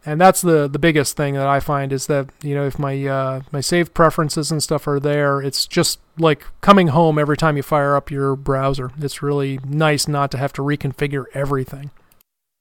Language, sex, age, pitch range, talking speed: English, male, 30-49, 145-180 Hz, 210 wpm